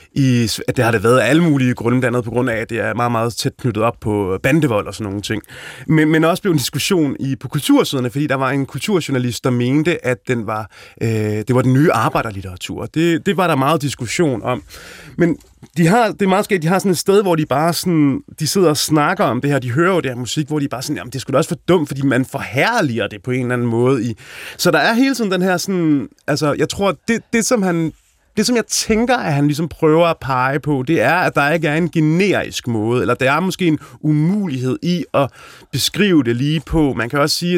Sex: male